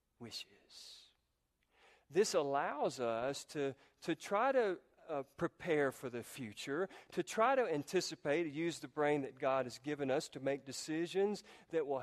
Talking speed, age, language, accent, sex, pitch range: 155 wpm, 50-69, English, American, male, 135-180 Hz